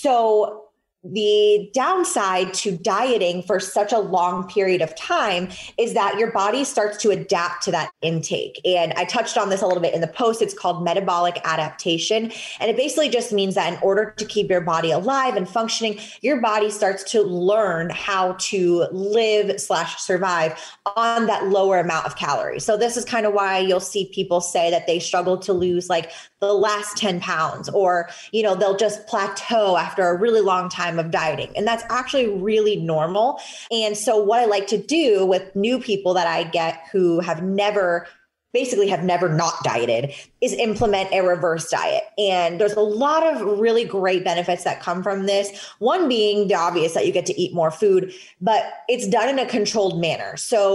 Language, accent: English, American